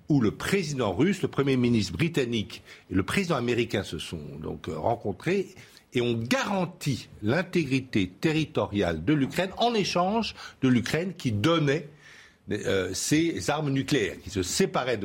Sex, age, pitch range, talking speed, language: male, 60-79, 95-145 Hz, 140 wpm, French